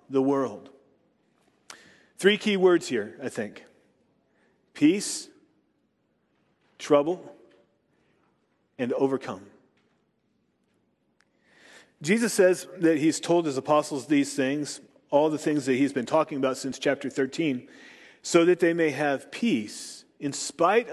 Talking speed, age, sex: 115 wpm, 40-59, male